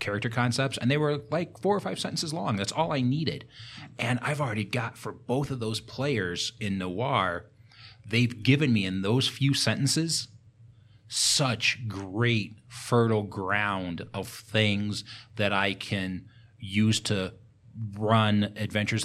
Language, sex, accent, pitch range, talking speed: English, male, American, 100-120 Hz, 145 wpm